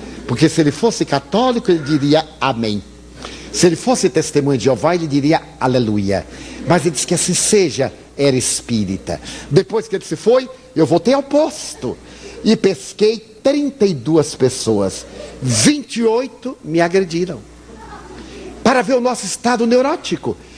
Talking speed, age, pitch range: 135 wpm, 60-79, 140-225 Hz